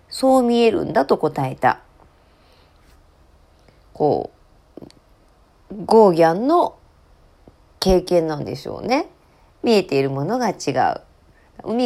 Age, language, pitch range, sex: 40-59, Japanese, 155-225 Hz, female